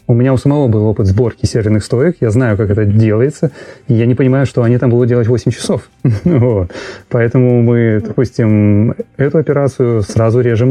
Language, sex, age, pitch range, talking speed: Russian, male, 30-49, 110-140 Hz, 175 wpm